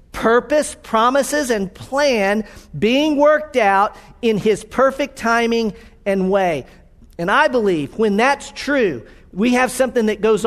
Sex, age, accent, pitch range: male, 40-59, American, 160-245 Hz